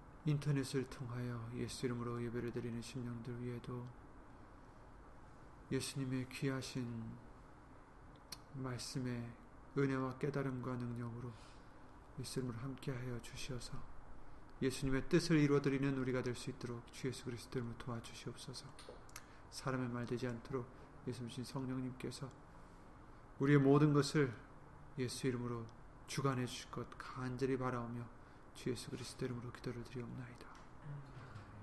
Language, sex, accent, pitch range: Korean, male, native, 120-135 Hz